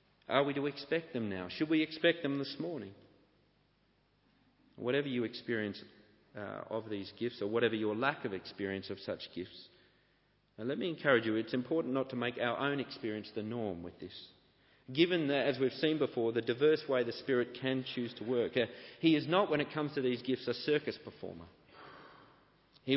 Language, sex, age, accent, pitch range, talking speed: English, male, 40-59, Australian, 110-140 Hz, 190 wpm